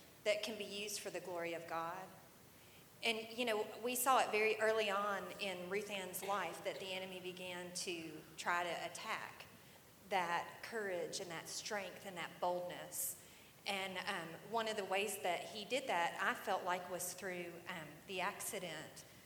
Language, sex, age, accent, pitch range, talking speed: English, female, 40-59, American, 170-215 Hz, 175 wpm